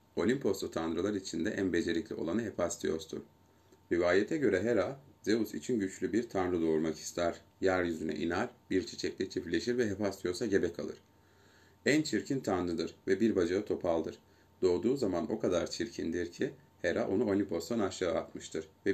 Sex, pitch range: male, 85-100 Hz